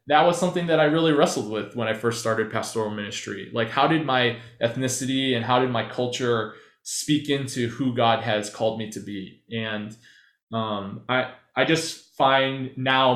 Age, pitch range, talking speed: 20-39, 115-130 Hz, 180 wpm